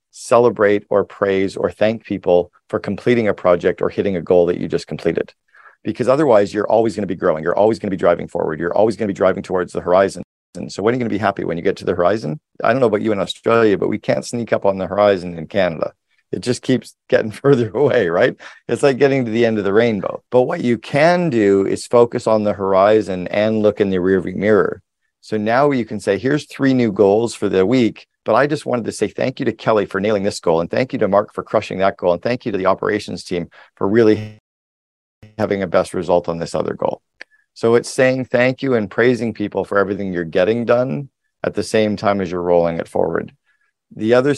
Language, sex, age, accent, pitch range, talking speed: English, male, 40-59, American, 95-120 Hz, 245 wpm